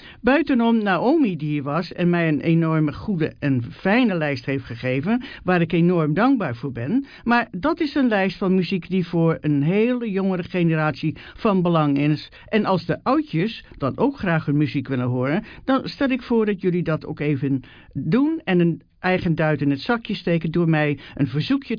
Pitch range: 150-225 Hz